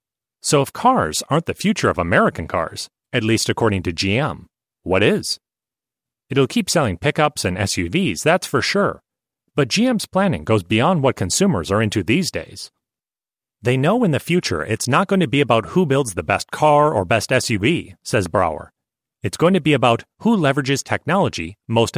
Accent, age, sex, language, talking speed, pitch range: American, 30-49, male, English, 180 wpm, 105-140 Hz